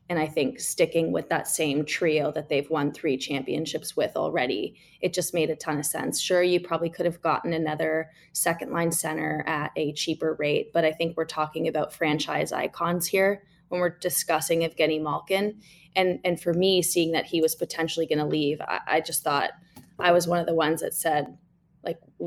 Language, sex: English, female